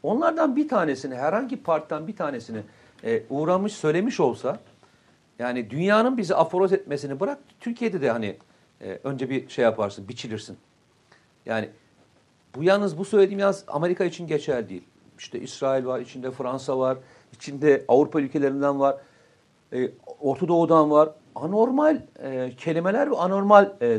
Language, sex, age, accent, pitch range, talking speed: Turkish, male, 60-79, native, 125-190 Hz, 140 wpm